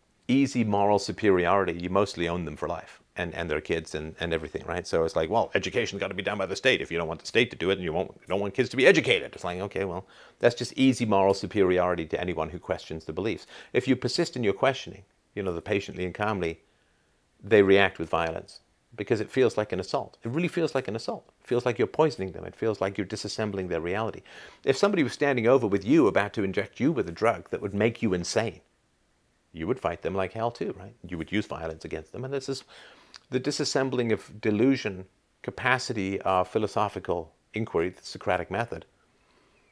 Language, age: English, 50-69